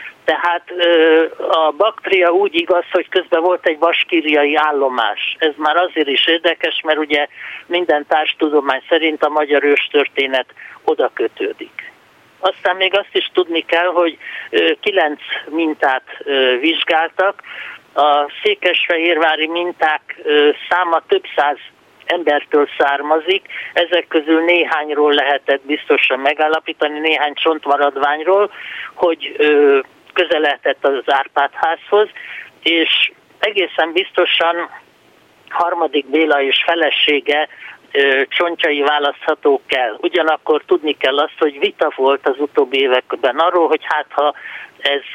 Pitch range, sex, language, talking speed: 150-185 Hz, male, Hungarian, 110 wpm